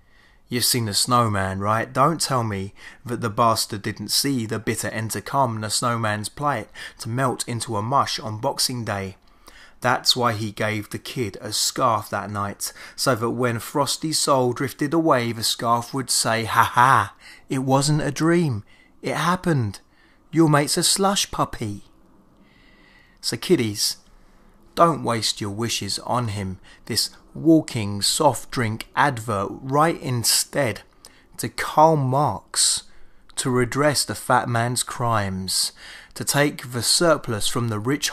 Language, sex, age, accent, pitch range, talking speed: English, male, 20-39, British, 105-140 Hz, 145 wpm